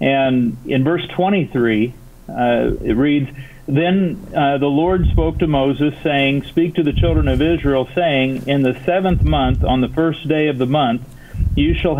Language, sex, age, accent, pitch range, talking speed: English, male, 40-59, American, 130-155 Hz, 175 wpm